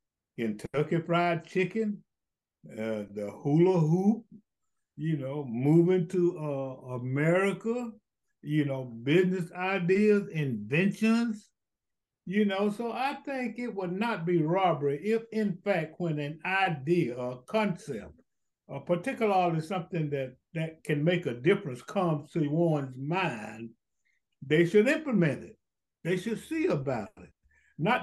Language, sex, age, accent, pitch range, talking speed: English, male, 60-79, American, 150-210 Hz, 125 wpm